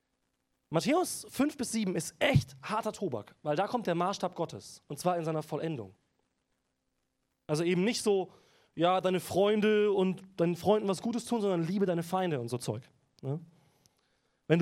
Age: 20-39